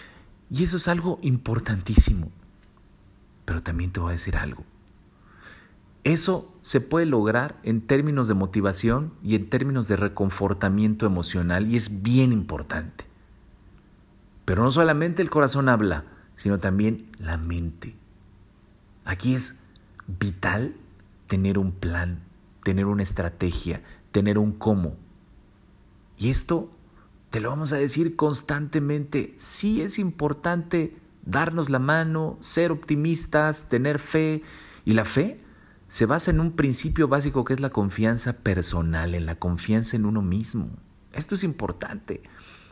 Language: Spanish